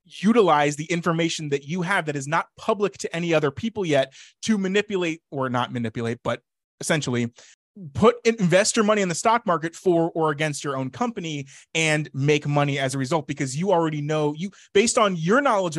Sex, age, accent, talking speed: male, 20-39, American, 195 wpm